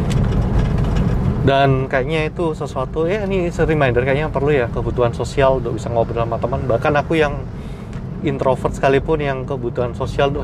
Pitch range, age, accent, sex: 120-155 Hz, 30-49, native, male